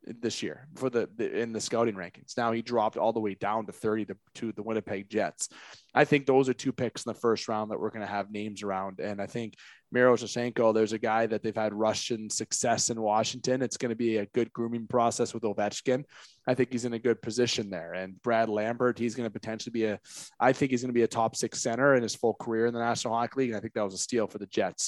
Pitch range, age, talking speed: 110-125 Hz, 20-39, 270 wpm